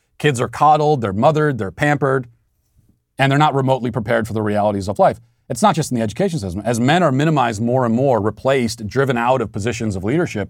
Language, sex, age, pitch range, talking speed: English, male, 40-59, 110-140 Hz, 215 wpm